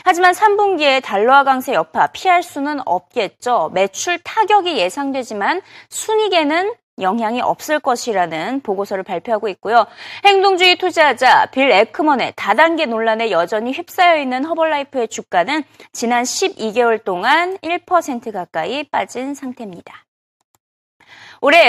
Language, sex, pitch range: Korean, female, 230-355 Hz